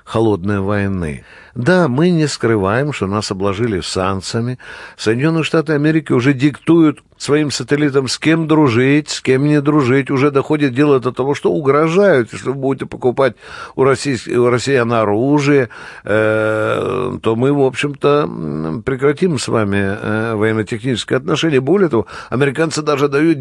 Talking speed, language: 135 wpm, Russian